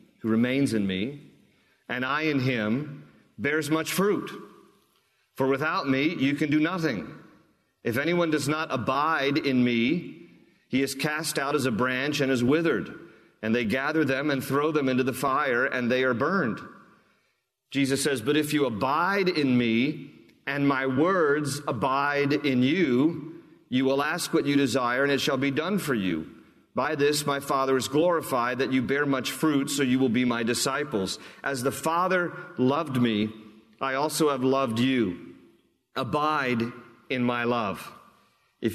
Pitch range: 125-145 Hz